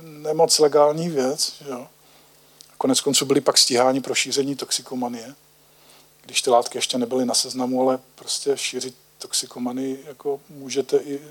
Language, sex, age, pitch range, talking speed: Slovak, male, 40-59, 130-150 Hz, 140 wpm